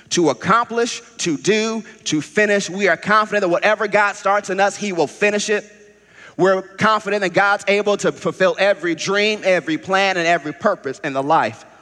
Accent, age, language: American, 30-49, English